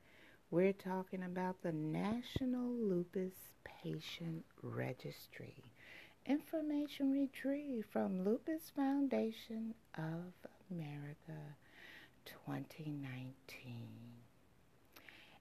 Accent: American